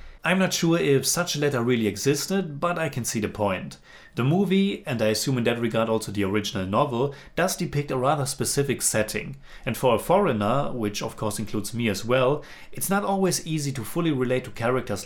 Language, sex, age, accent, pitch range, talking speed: English, male, 30-49, German, 110-145 Hz, 210 wpm